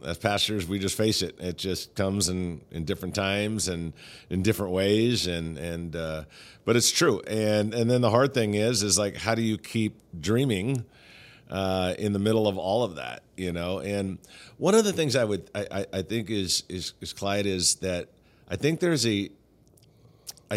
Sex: male